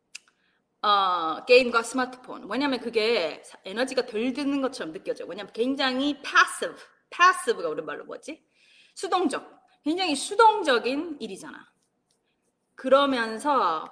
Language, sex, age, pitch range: Korean, female, 30-49, 240-365 Hz